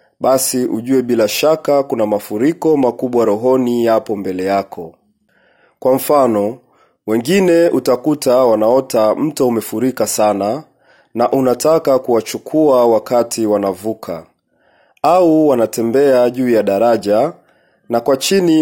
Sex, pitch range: male, 110-140 Hz